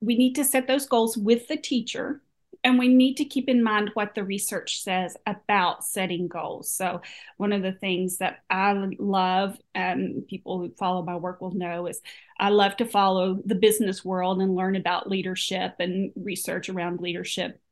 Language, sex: English, female